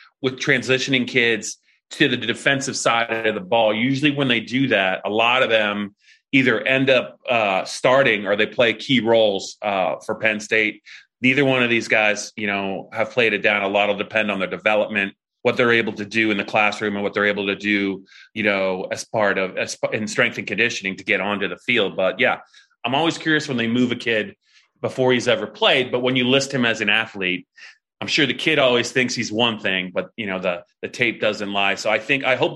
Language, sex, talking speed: English, male, 225 wpm